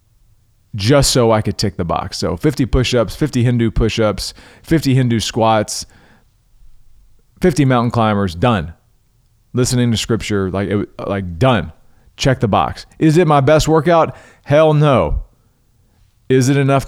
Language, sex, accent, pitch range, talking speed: English, male, American, 105-130 Hz, 140 wpm